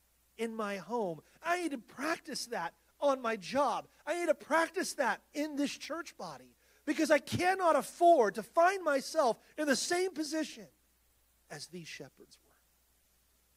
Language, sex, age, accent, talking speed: English, male, 40-59, American, 155 wpm